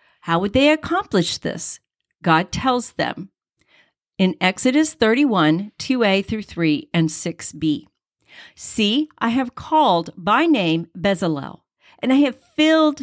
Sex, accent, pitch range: female, American, 185-270 Hz